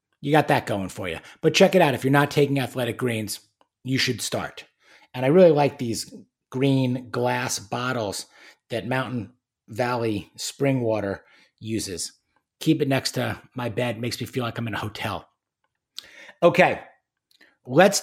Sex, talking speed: male, 160 wpm